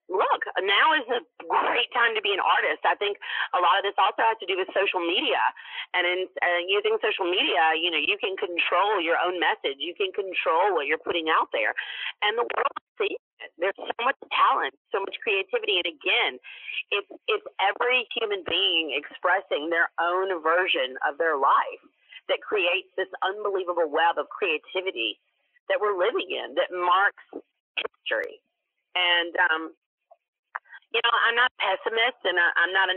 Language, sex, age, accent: English, female, 40-59, American